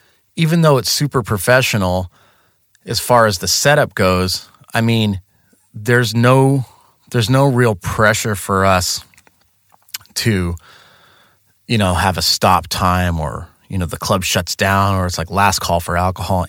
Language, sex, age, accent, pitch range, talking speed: English, male, 30-49, American, 90-115 Hz, 155 wpm